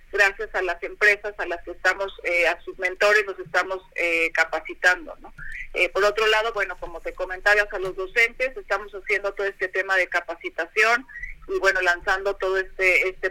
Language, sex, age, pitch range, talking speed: Spanish, female, 40-59, 185-210 Hz, 190 wpm